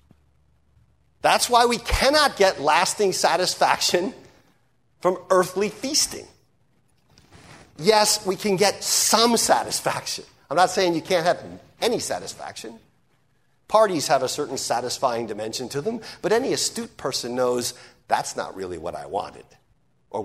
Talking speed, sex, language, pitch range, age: 130 wpm, male, English, 135-195 Hz, 50-69